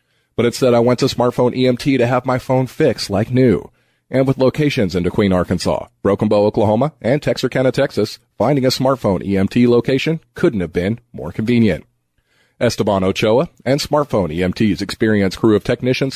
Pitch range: 105-130 Hz